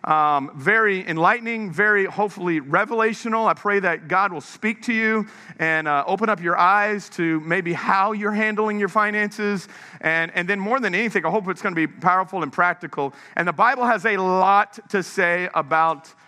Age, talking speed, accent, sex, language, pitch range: 40-59, 190 wpm, American, male, English, 175-220 Hz